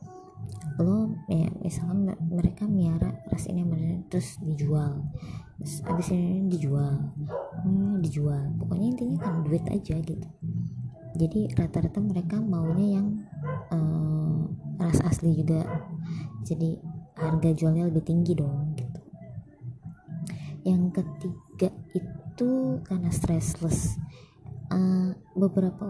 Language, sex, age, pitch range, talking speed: Indonesian, male, 20-39, 155-180 Hz, 100 wpm